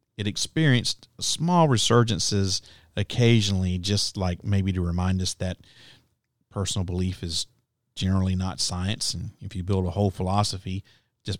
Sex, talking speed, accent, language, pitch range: male, 135 wpm, American, English, 95-120 Hz